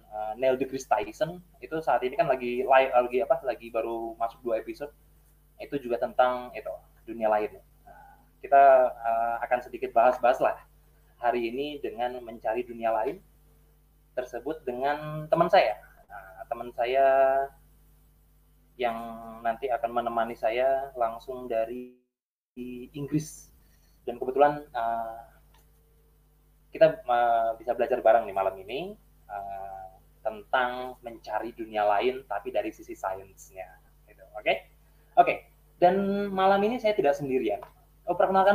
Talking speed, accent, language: 130 wpm, native, Indonesian